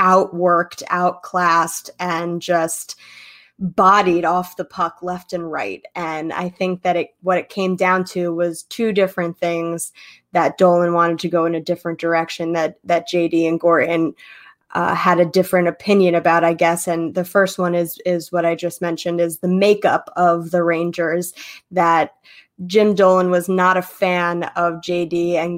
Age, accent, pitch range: 20-39, American, 170-195 Hz